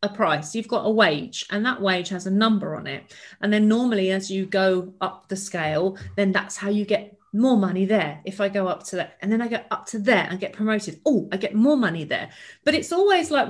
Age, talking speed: 40-59, 255 wpm